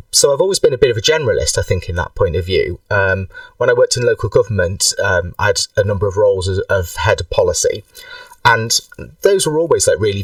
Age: 30-49